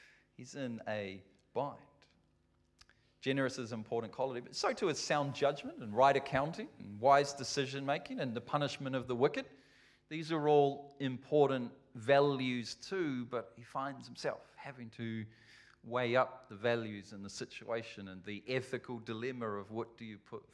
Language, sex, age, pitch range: English, male, 40-59, 110-140 Hz